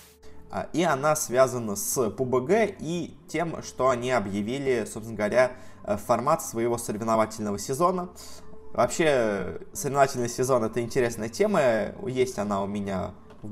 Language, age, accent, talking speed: Russian, 20-39, native, 120 wpm